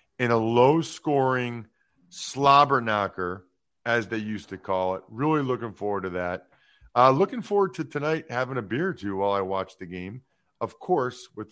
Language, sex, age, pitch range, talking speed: English, male, 40-59, 115-165 Hz, 175 wpm